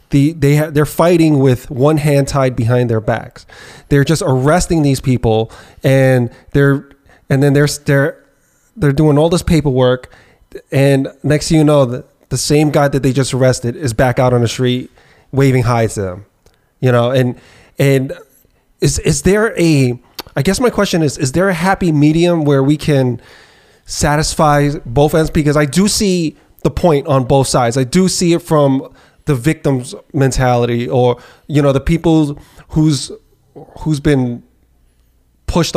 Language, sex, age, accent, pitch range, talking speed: English, male, 20-39, American, 125-150 Hz, 170 wpm